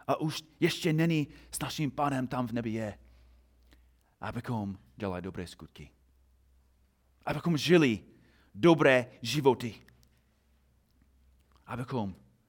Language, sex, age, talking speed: Czech, male, 30-49, 95 wpm